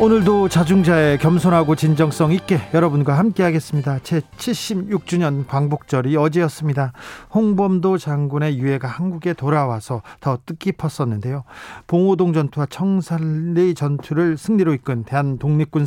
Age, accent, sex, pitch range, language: 40-59, native, male, 140-180 Hz, Korean